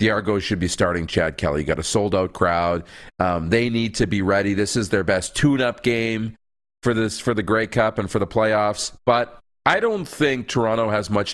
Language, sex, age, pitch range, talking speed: English, male, 40-59, 100-135 Hz, 210 wpm